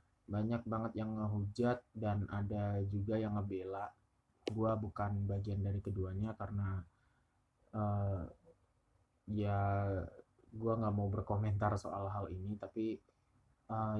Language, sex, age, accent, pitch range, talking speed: Indonesian, male, 20-39, native, 95-110 Hz, 110 wpm